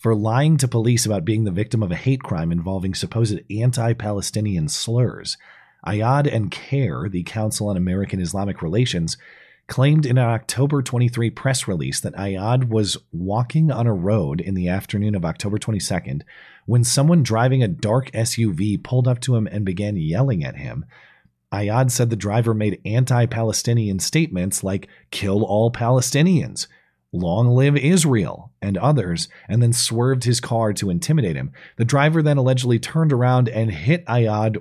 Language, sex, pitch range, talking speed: English, male, 95-130 Hz, 165 wpm